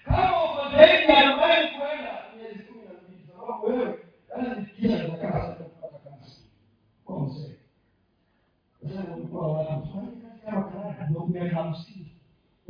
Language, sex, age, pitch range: Swahili, male, 50-69, 125-190 Hz